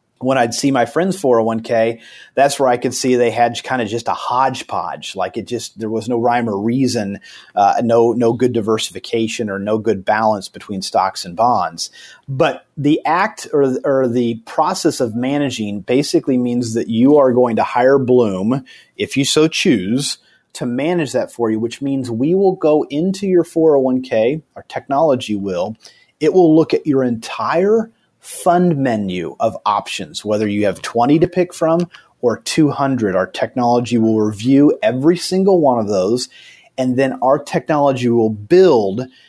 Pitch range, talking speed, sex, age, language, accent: 115-155 Hz, 170 wpm, male, 30-49, English, American